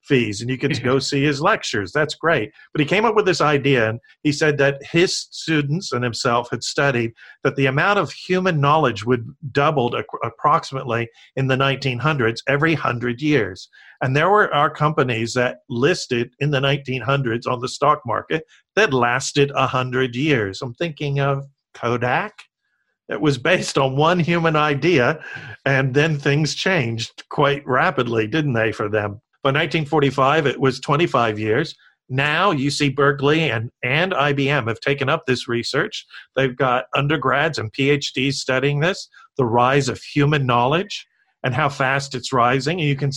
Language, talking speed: English, 165 wpm